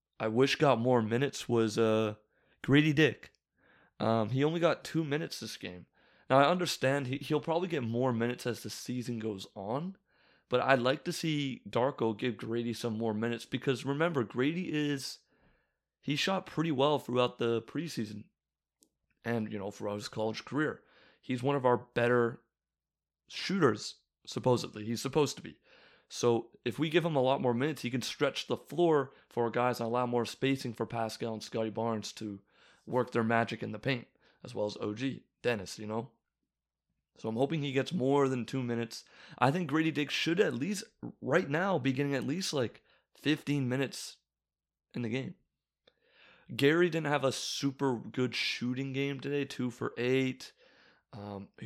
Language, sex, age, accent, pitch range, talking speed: English, male, 30-49, American, 115-140 Hz, 175 wpm